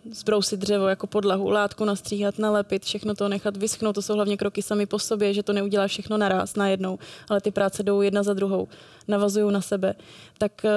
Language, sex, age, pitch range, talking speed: Czech, female, 20-39, 205-215 Hz, 200 wpm